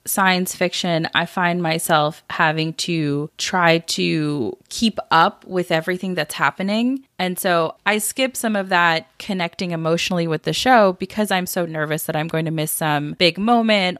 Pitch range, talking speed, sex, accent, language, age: 165-220 Hz, 165 wpm, female, American, English, 20-39